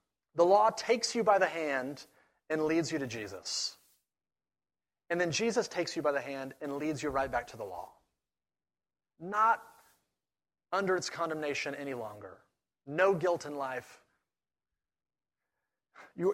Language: English